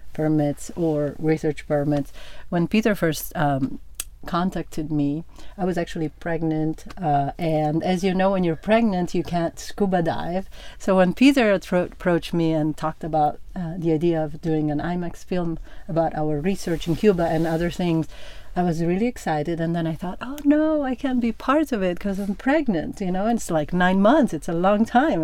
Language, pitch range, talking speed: English, 155-190 Hz, 190 wpm